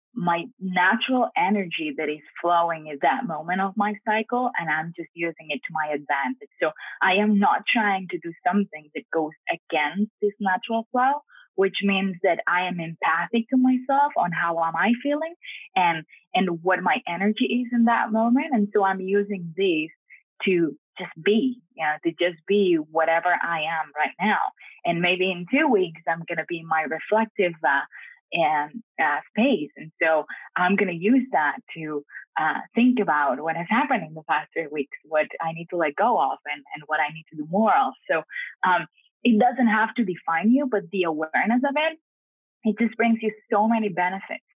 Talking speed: 190 wpm